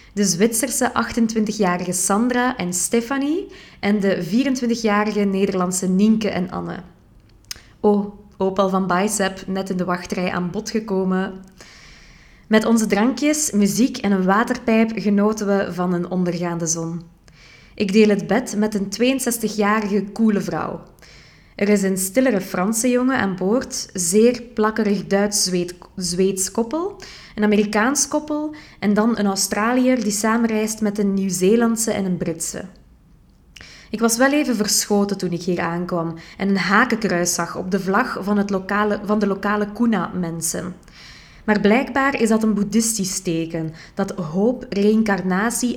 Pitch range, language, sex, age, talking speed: 185-225 Hz, Dutch, female, 20-39, 140 wpm